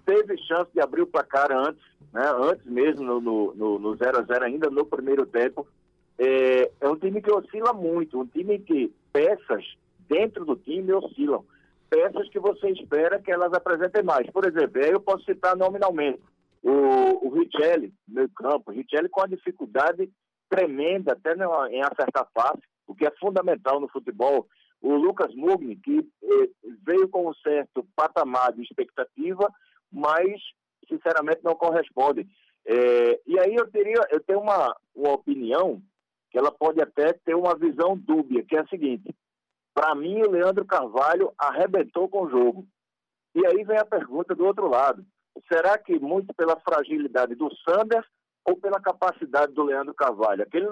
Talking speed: 165 wpm